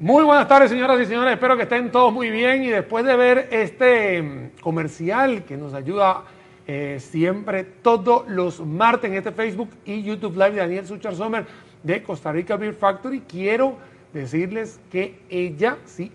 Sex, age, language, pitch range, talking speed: male, 40-59, Spanish, 185-240 Hz, 170 wpm